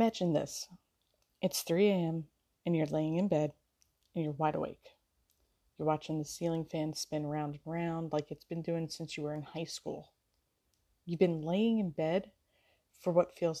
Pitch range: 155-180 Hz